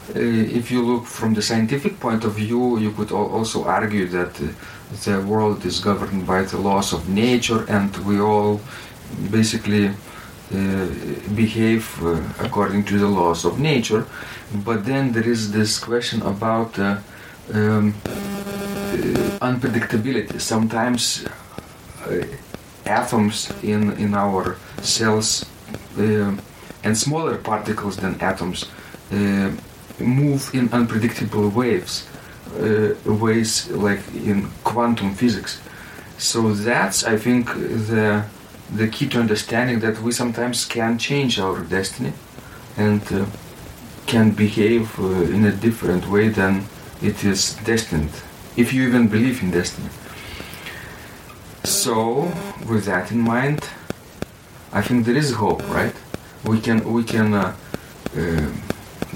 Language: English